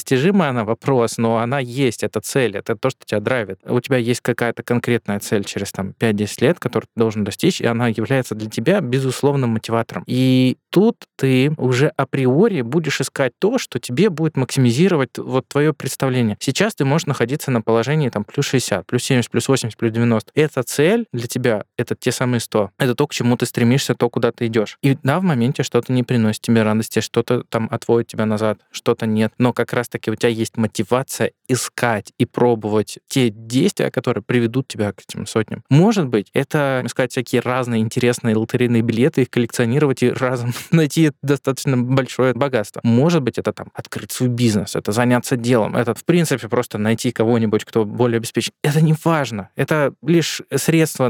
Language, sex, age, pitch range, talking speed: Russian, male, 20-39, 115-135 Hz, 190 wpm